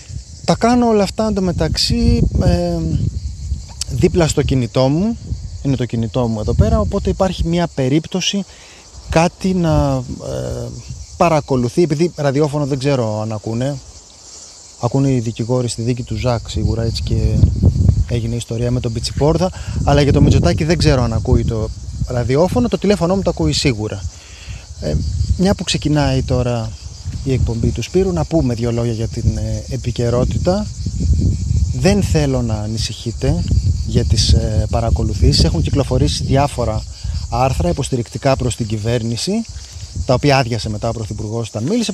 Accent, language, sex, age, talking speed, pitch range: native, Greek, male, 30-49, 140 wpm, 110-155 Hz